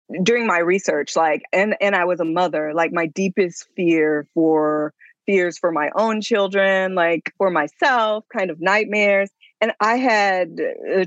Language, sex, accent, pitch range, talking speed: English, female, American, 165-200 Hz, 165 wpm